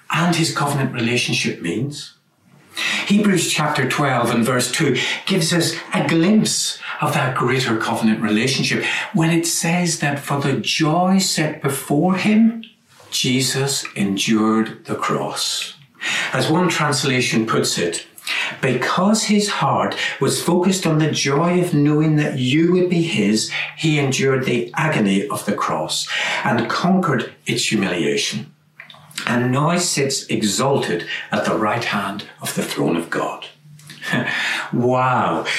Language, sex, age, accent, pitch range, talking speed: English, male, 60-79, British, 130-175 Hz, 135 wpm